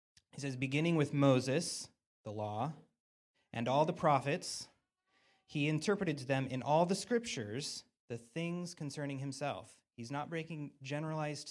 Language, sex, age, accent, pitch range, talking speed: English, male, 30-49, American, 115-150 Hz, 140 wpm